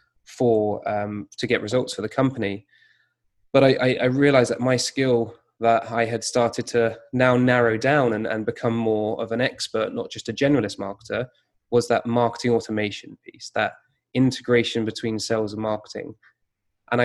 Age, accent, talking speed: 20-39, British, 170 wpm